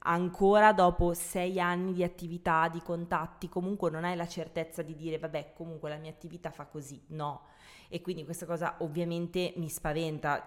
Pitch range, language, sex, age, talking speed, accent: 145-170 Hz, Italian, female, 20-39, 170 wpm, native